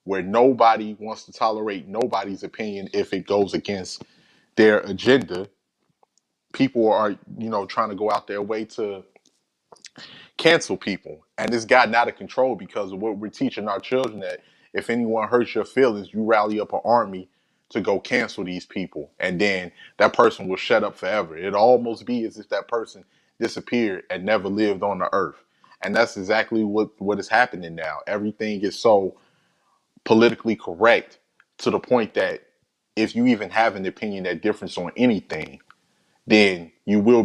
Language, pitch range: English, 95-110 Hz